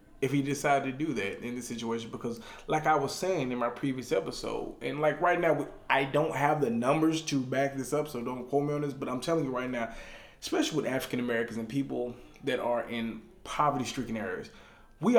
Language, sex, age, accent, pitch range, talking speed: English, male, 20-39, American, 120-155 Hz, 215 wpm